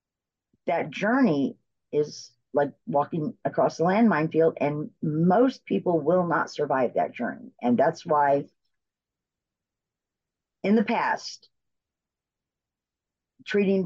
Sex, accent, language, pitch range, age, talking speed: female, American, English, 155-220 Hz, 50-69, 105 wpm